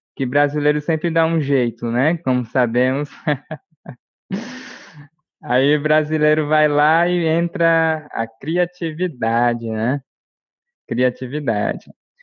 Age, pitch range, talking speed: 20-39, 125-165 Hz, 100 wpm